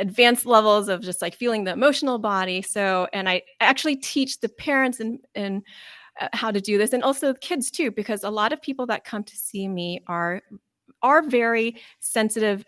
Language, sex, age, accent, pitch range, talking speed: English, female, 30-49, American, 190-245 Hz, 185 wpm